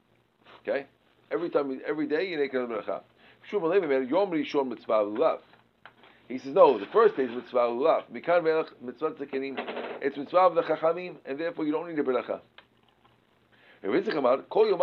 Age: 50-69